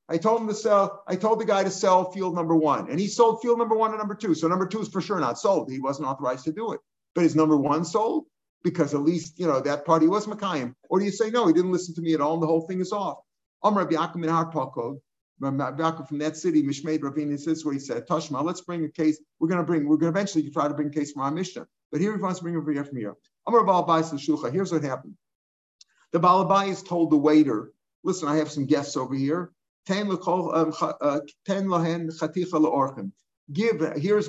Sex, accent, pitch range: male, American, 150-185 Hz